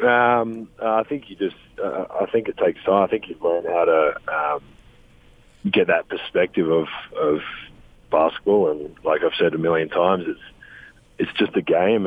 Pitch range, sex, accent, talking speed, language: 85-115 Hz, male, Australian, 180 wpm, English